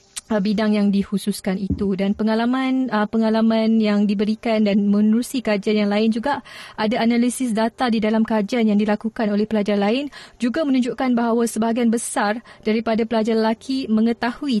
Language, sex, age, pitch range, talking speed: Malay, female, 30-49, 210-235 Hz, 145 wpm